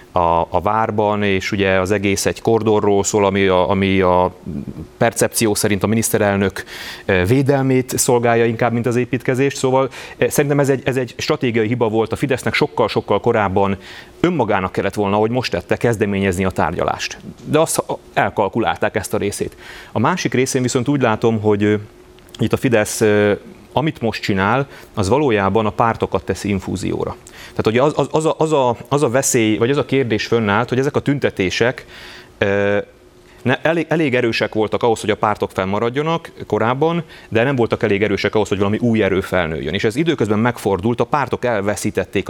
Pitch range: 100-125 Hz